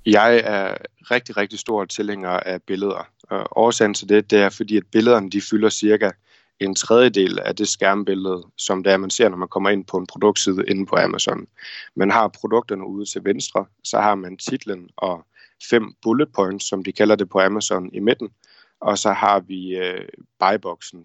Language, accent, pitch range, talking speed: Danish, native, 95-110 Hz, 195 wpm